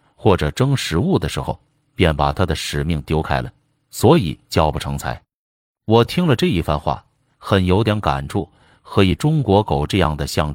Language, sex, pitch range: Chinese, male, 75-115 Hz